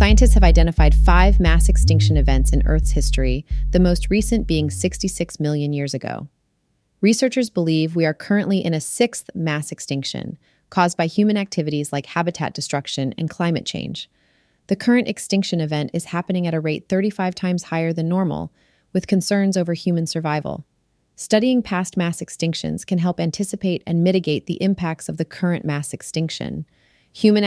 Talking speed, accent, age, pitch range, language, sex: 160 wpm, American, 30-49, 155-185 Hz, English, female